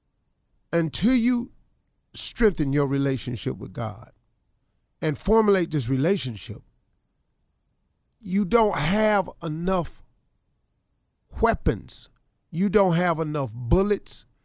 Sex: male